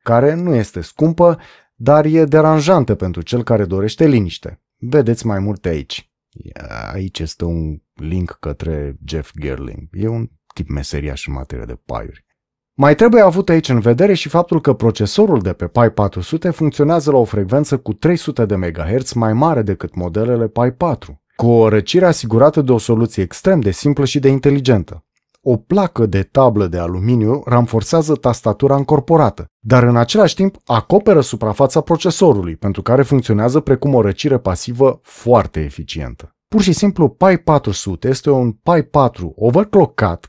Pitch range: 95-140 Hz